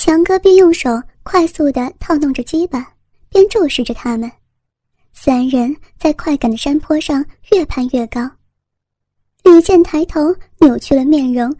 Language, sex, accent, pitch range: Chinese, male, native, 255-330 Hz